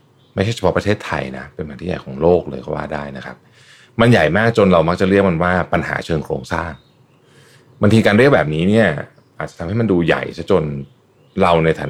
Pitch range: 80-125 Hz